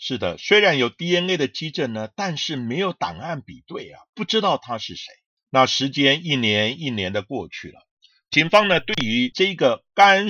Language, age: Chinese, 50-69